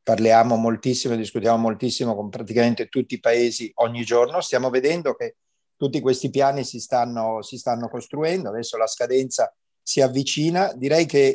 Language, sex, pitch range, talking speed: Italian, male, 115-135 Hz, 155 wpm